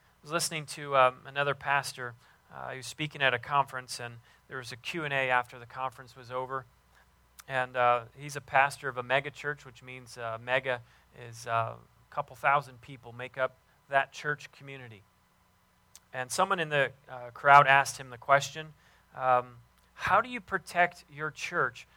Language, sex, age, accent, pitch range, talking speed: English, male, 30-49, American, 125-150 Hz, 175 wpm